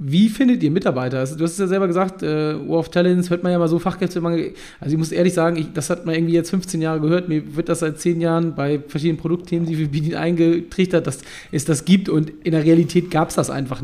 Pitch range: 150-175 Hz